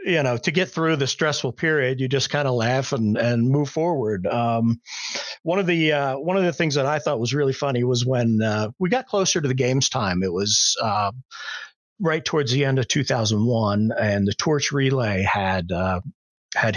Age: 50-69